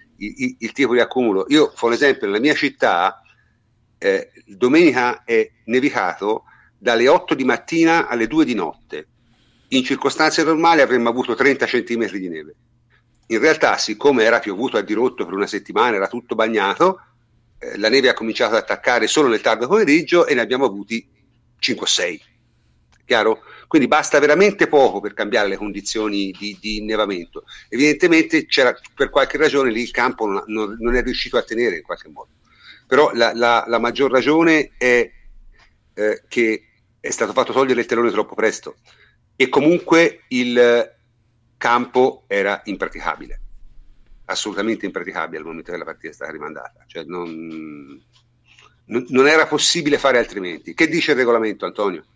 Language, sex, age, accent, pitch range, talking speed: Italian, male, 50-69, native, 115-165 Hz, 155 wpm